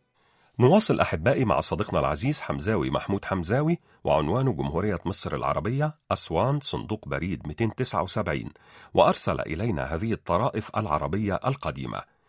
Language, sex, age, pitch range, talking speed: Arabic, male, 40-59, 100-135 Hz, 105 wpm